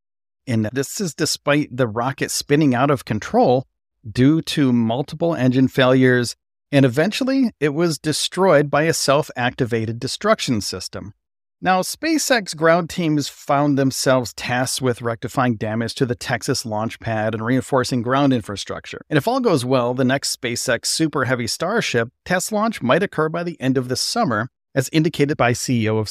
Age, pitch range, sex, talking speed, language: 40-59, 125-165 Hz, male, 160 wpm, English